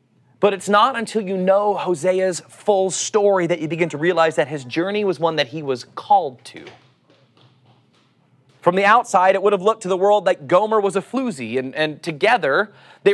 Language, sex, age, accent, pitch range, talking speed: English, male, 30-49, American, 130-185 Hz, 195 wpm